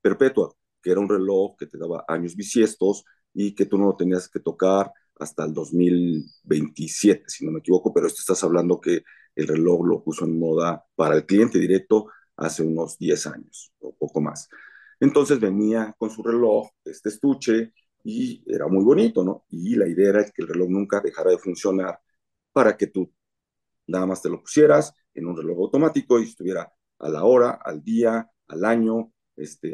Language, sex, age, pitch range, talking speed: Spanish, male, 40-59, 95-115 Hz, 185 wpm